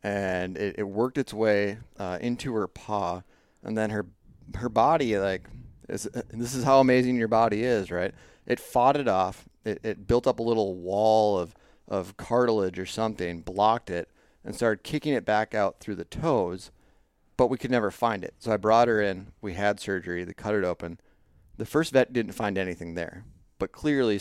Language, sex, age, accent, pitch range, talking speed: English, male, 30-49, American, 90-115 Hz, 195 wpm